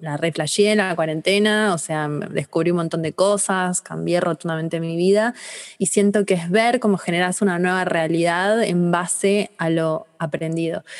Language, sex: Spanish, female